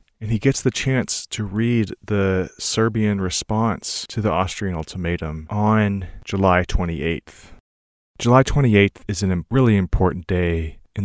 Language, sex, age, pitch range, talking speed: English, male, 30-49, 90-110 Hz, 135 wpm